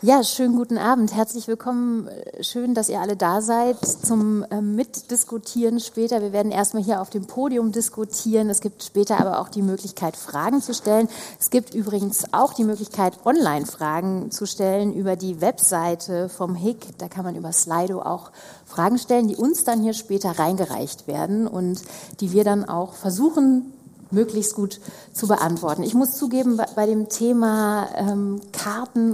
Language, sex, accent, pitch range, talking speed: German, female, German, 190-230 Hz, 165 wpm